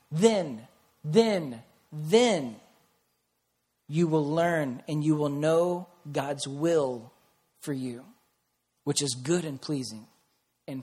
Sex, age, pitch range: male, 40-59, 130-175 Hz